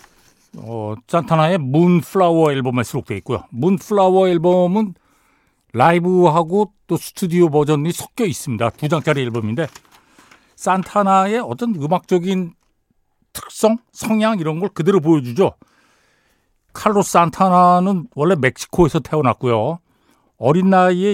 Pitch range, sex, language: 130-185 Hz, male, Korean